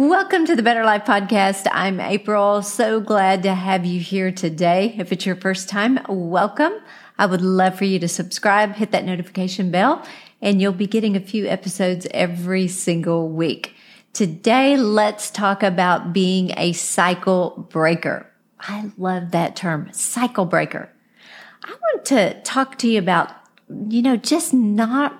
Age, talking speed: 40-59, 160 wpm